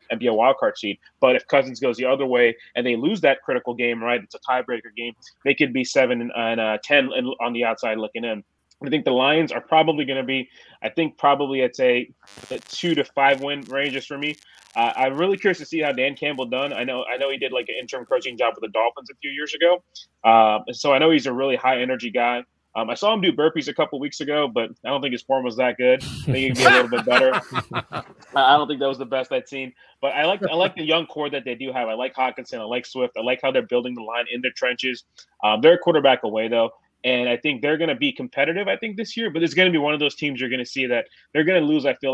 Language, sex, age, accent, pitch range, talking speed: English, male, 20-39, American, 120-150 Hz, 280 wpm